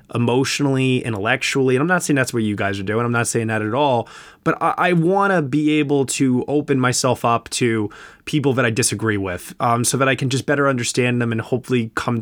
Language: English